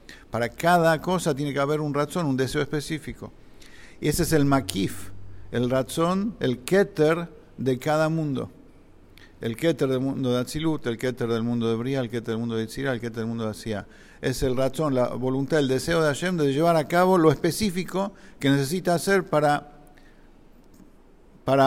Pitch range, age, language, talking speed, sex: 120-150 Hz, 50-69, English, 185 wpm, male